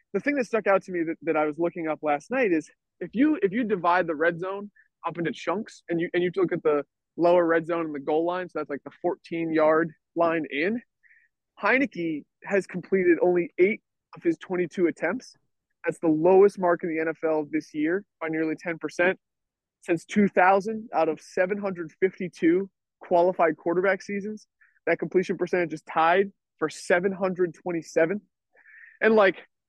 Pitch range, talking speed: 160-195 Hz, 175 wpm